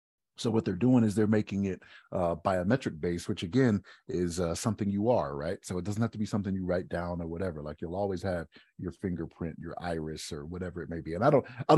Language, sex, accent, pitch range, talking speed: English, male, American, 85-110 Hz, 245 wpm